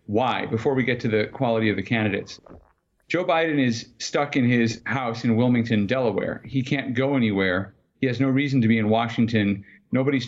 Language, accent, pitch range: English, American, 110-135 Hz